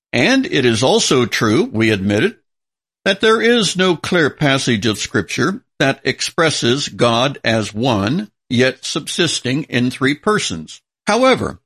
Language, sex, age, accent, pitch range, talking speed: English, male, 60-79, American, 120-175 Hz, 140 wpm